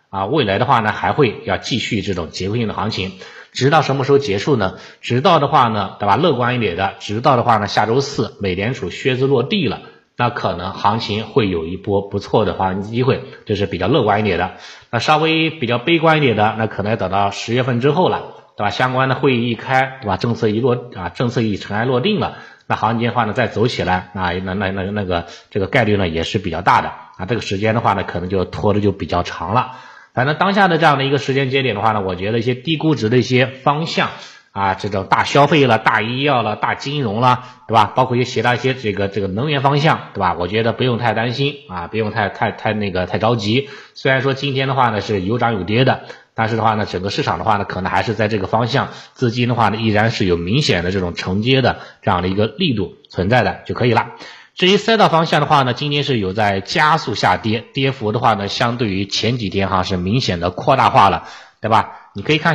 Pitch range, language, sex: 100-130 Hz, Chinese, male